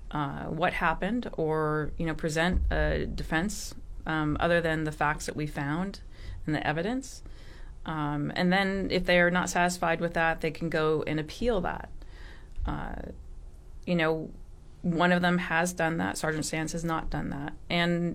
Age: 30-49